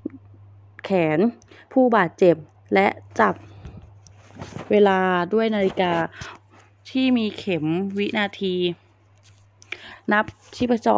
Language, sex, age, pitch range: Thai, female, 20-39, 160-205 Hz